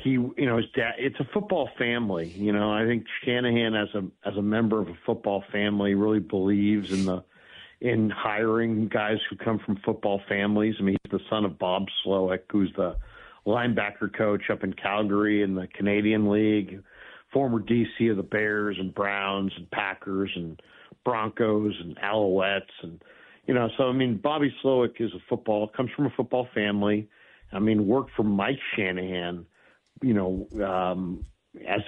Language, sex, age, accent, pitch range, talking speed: English, male, 50-69, American, 100-115 Hz, 175 wpm